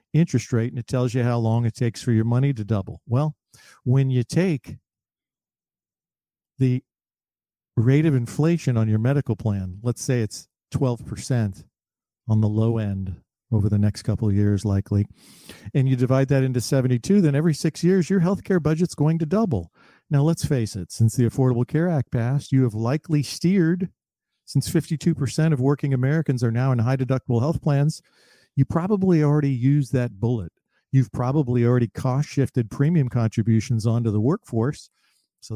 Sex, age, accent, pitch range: male, 50-69, American, 115-155 Hz